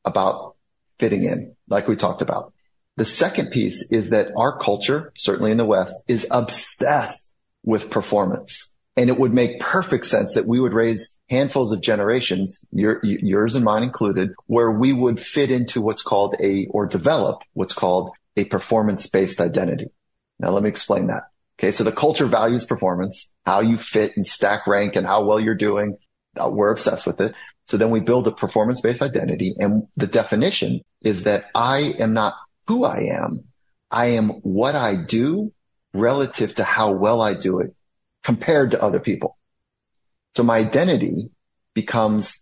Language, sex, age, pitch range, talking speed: English, male, 30-49, 105-125 Hz, 165 wpm